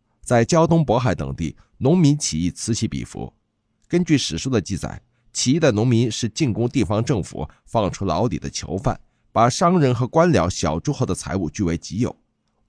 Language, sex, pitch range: Chinese, male, 85-130 Hz